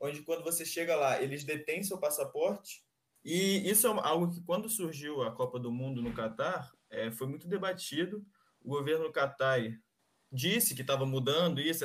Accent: Brazilian